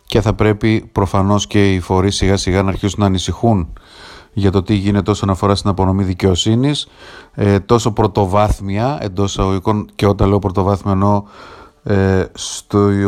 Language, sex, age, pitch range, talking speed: Greek, male, 30-49, 100-120 Hz, 140 wpm